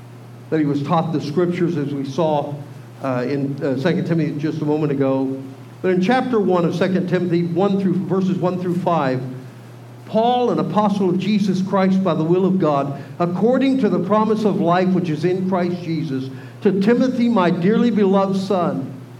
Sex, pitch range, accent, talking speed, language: male, 140-205 Hz, American, 185 wpm, English